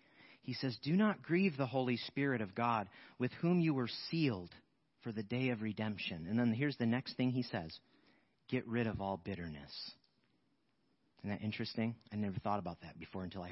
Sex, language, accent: male, English, American